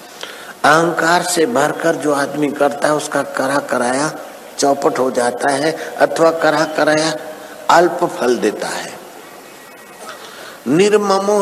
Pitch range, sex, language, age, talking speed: 150-185 Hz, male, Hindi, 60-79, 120 wpm